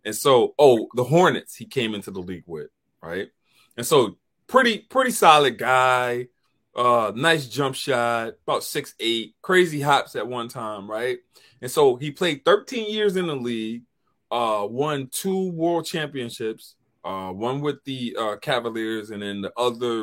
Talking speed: 160 wpm